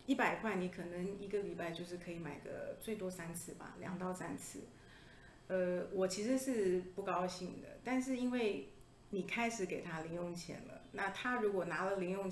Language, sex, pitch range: Chinese, female, 175-205 Hz